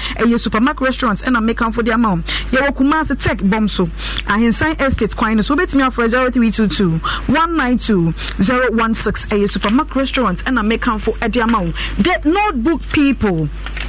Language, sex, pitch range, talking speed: English, female, 215-280 Hz, 205 wpm